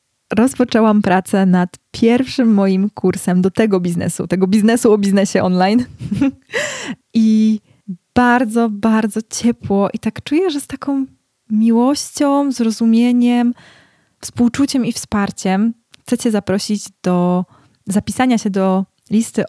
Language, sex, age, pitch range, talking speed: Polish, female, 20-39, 175-215 Hz, 115 wpm